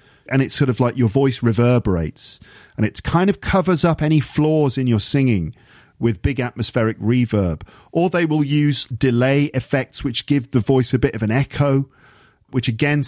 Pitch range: 110-145 Hz